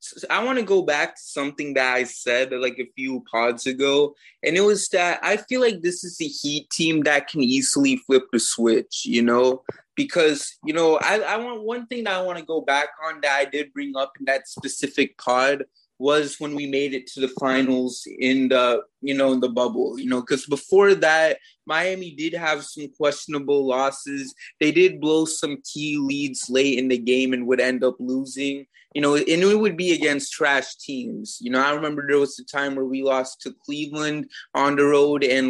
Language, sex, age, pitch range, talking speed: English, male, 20-39, 130-175 Hz, 215 wpm